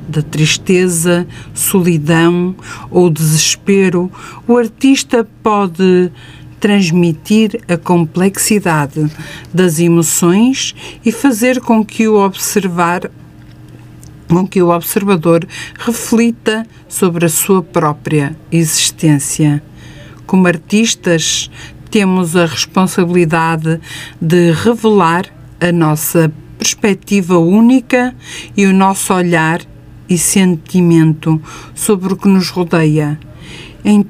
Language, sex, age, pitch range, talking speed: Portuguese, female, 50-69, 155-195 Hz, 90 wpm